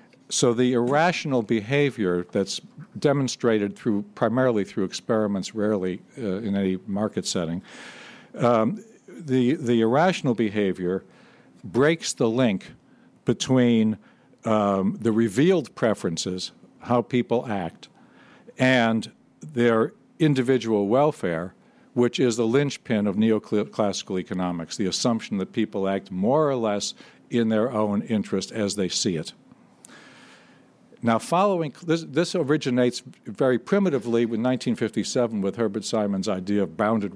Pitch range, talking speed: 100-125 Hz, 120 wpm